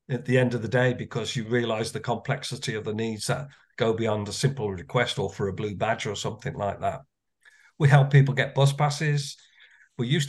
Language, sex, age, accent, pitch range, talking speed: English, male, 50-69, British, 110-140 Hz, 215 wpm